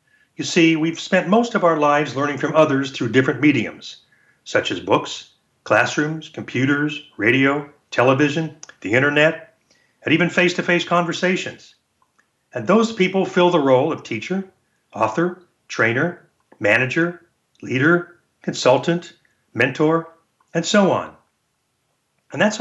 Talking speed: 120 wpm